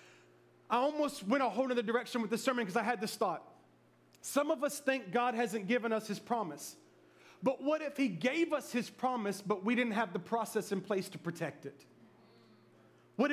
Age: 30-49